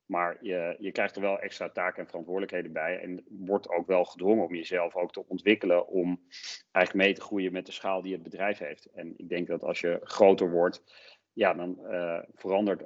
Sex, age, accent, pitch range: male, 40-59, Dutch, 85-95 Hz